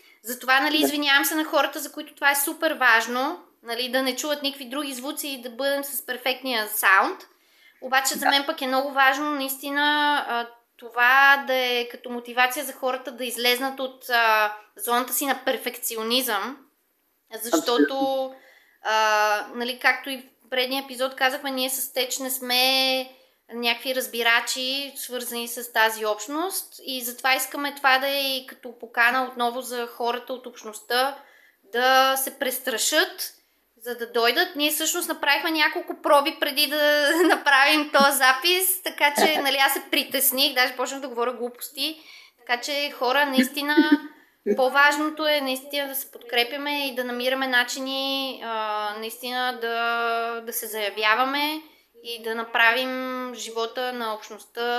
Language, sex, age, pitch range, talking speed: Bulgarian, female, 20-39, 245-290 Hz, 140 wpm